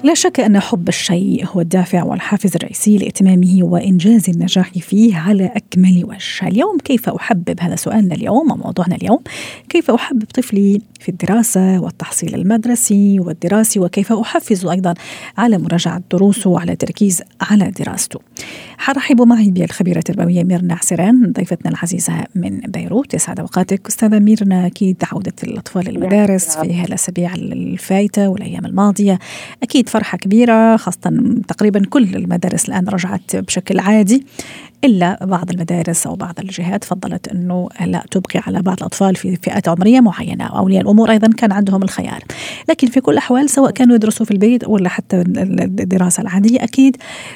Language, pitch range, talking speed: Arabic, 185-220 Hz, 140 wpm